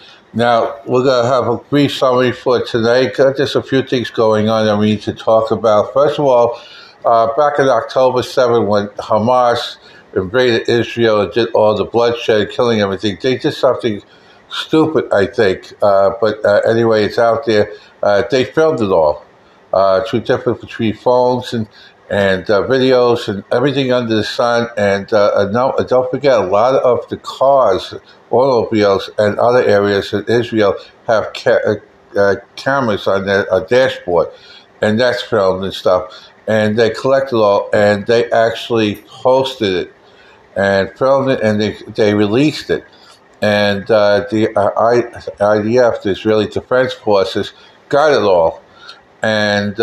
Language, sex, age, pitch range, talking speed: English, male, 60-79, 105-125 Hz, 160 wpm